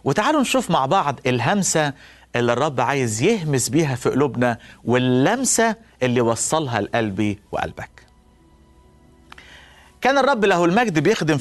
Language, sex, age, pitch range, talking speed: Persian, male, 50-69, 125-185 Hz, 115 wpm